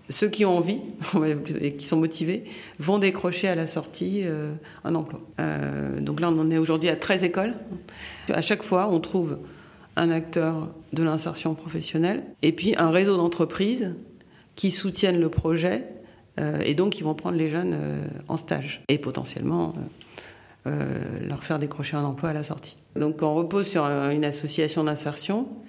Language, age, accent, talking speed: French, 50-69, French, 175 wpm